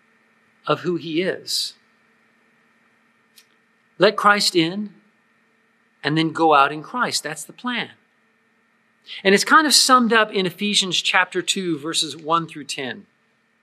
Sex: male